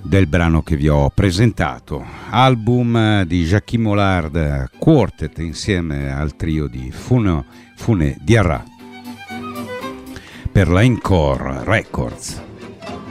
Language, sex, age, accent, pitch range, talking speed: Italian, male, 50-69, native, 80-105 Hz, 105 wpm